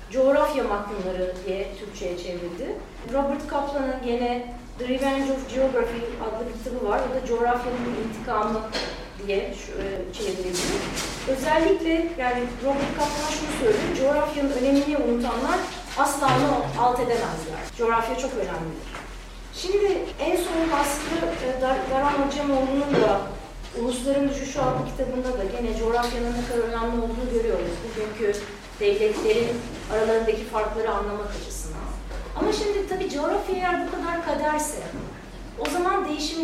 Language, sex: Turkish, female